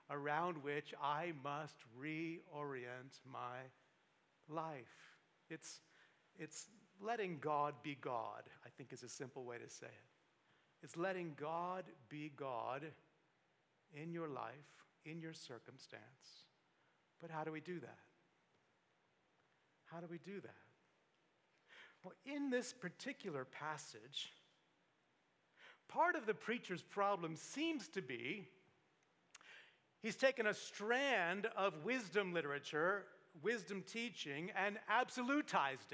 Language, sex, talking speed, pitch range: English, male, 115 wpm, 150-220 Hz